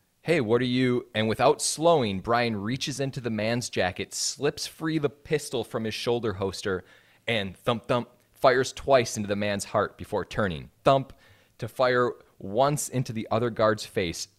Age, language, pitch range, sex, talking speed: 20-39, English, 95-125 Hz, male, 170 wpm